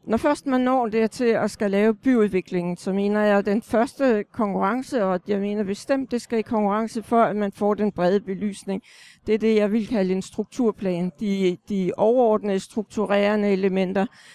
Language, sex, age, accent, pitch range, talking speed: Danish, female, 60-79, native, 195-235 Hz, 180 wpm